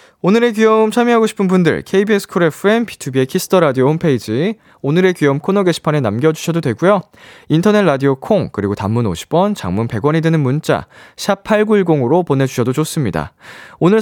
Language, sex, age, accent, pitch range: Korean, male, 20-39, native, 135-195 Hz